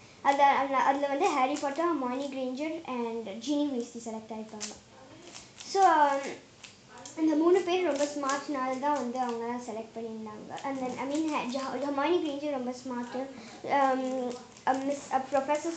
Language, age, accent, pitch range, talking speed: Tamil, 20-39, native, 245-315 Hz, 120 wpm